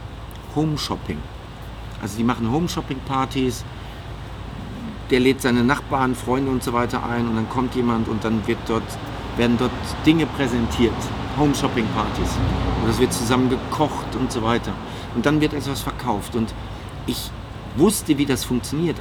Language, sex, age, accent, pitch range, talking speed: German, male, 50-69, German, 105-130 Hz, 160 wpm